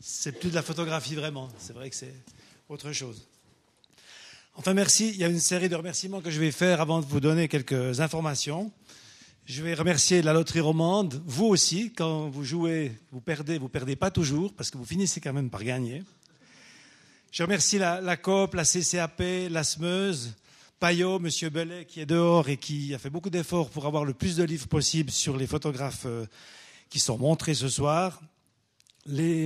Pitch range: 140-170 Hz